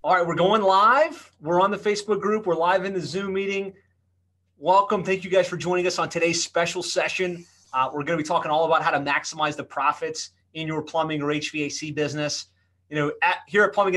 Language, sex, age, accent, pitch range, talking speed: English, male, 30-49, American, 150-185 Hz, 225 wpm